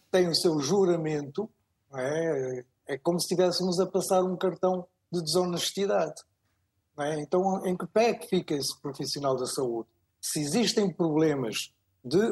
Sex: male